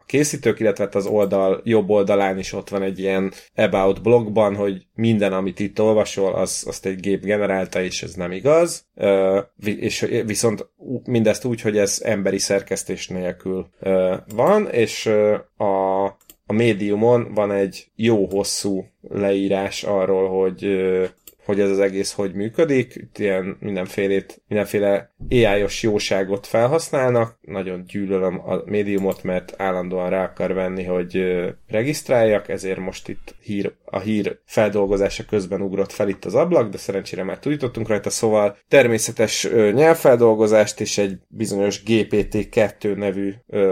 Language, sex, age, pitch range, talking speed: Hungarian, male, 30-49, 95-110 Hz, 135 wpm